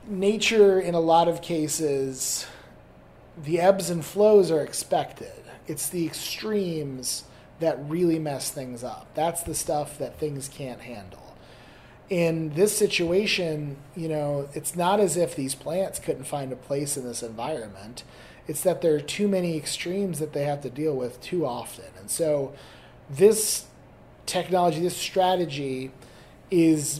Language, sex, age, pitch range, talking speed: English, male, 30-49, 135-170 Hz, 150 wpm